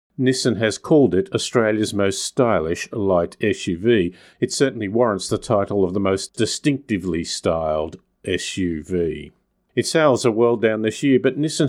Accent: Australian